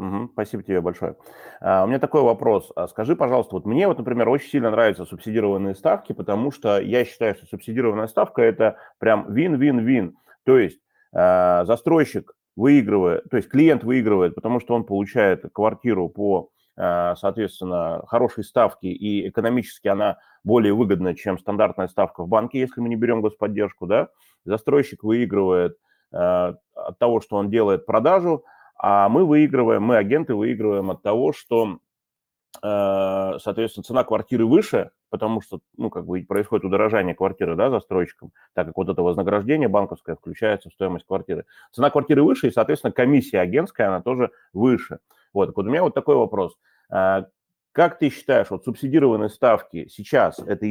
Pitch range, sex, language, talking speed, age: 95-125 Hz, male, Russian, 145 wpm, 30-49